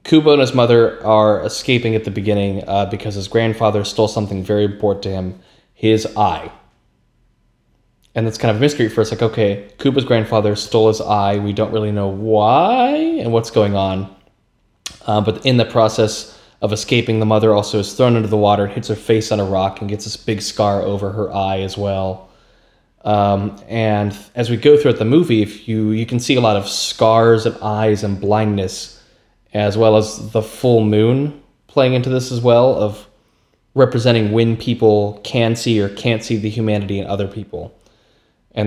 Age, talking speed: 20-39, 190 wpm